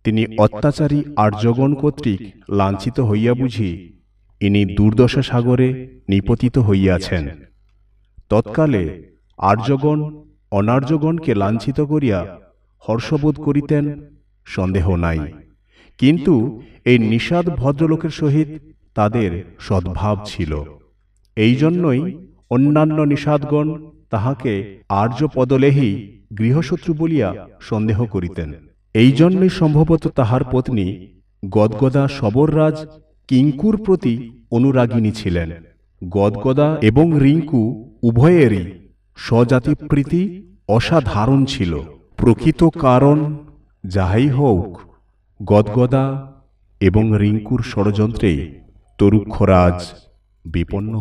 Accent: native